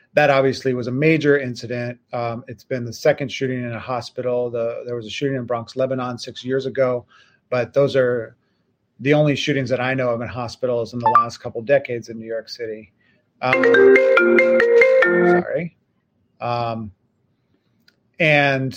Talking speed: 165 wpm